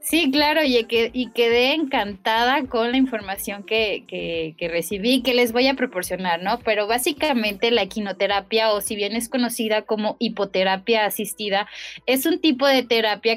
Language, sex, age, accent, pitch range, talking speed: Spanish, female, 20-39, Mexican, 205-250 Hz, 160 wpm